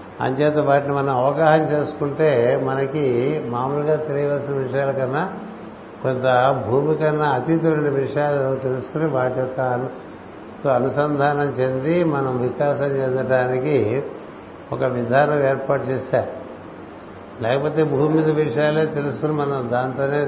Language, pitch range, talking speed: Telugu, 130-145 Hz, 100 wpm